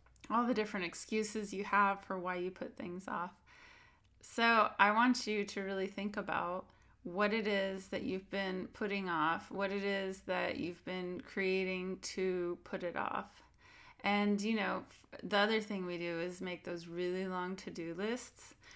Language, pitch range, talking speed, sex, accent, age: English, 185-215 Hz, 175 wpm, female, American, 20-39